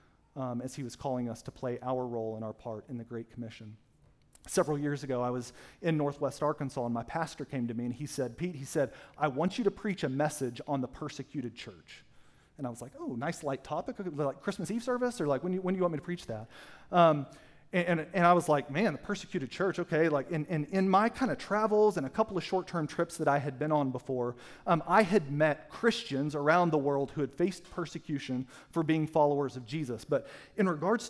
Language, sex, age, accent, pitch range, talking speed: English, male, 40-59, American, 135-185 Hz, 240 wpm